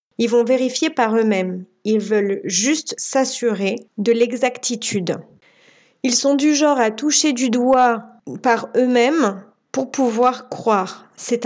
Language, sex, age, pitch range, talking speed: French, female, 30-49, 210-265 Hz, 130 wpm